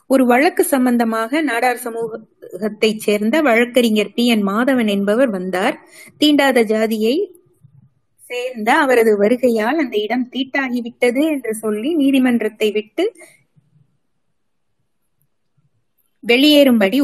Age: 20-39